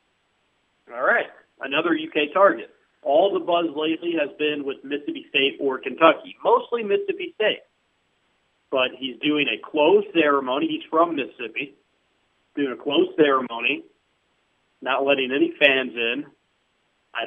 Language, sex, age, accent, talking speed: English, male, 40-59, American, 130 wpm